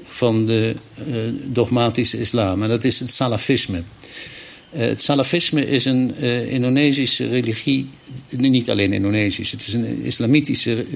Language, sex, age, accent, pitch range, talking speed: Dutch, male, 60-79, Dutch, 110-130 Hz, 120 wpm